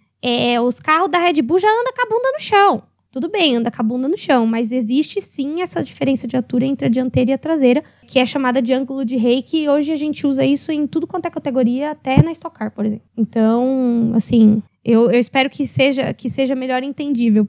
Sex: female